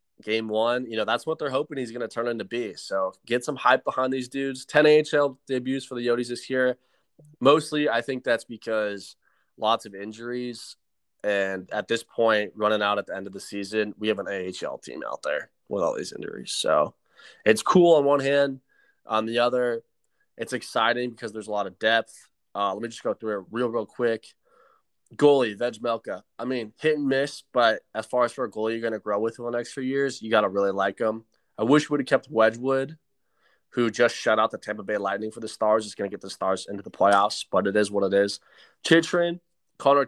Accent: American